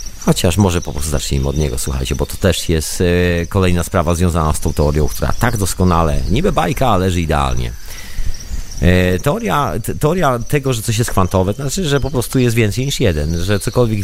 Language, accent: Polish, native